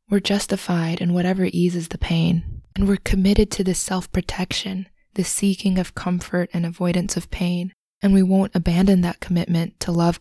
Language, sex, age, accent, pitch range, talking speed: English, female, 20-39, American, 175-200 Hz, 170 wpm